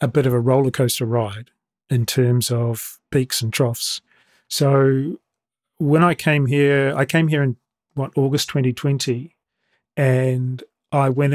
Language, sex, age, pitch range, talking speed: English, male, 40-59, 125-145 Hz, 150 wpm